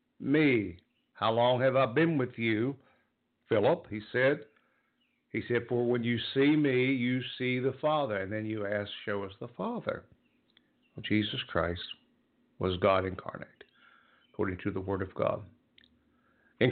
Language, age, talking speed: English, 60-79, 150 wpm